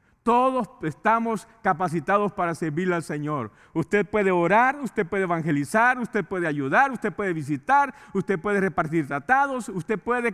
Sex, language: male, English